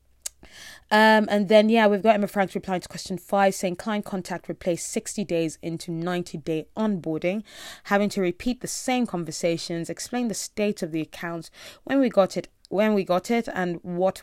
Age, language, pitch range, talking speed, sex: 20-39, English, 165-205 Hz, 185 wpm, female